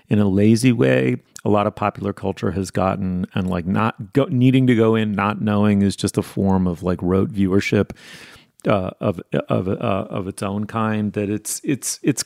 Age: 30-49